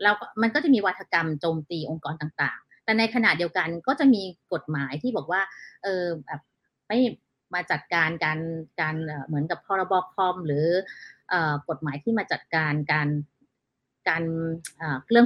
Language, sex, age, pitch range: Thai, female, 30-49, 155-230 Hz